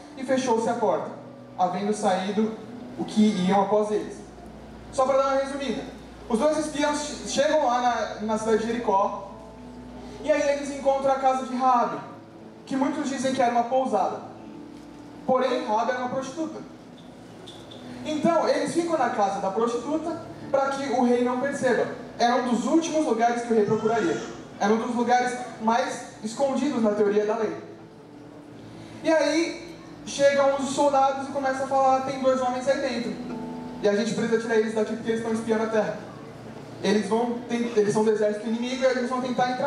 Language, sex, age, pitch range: Portuguese, male, 20-39, 220-265 Hz